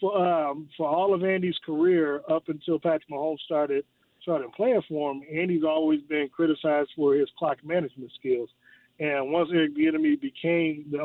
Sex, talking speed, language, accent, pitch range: male, 170 wpm, English, American, 150-185 Hz